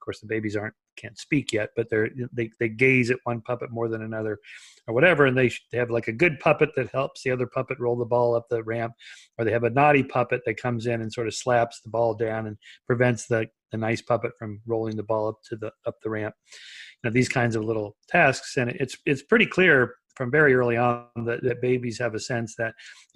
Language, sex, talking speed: English, male, 250 wpm